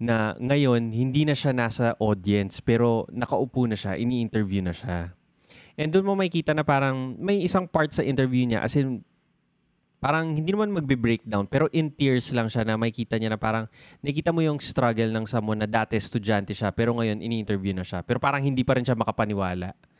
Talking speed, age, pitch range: 200 wpm, 20-39, 110-135 Hz